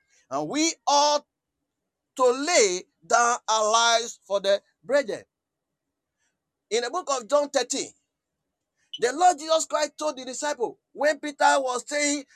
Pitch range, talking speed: 215-310 Hz, 135 wpm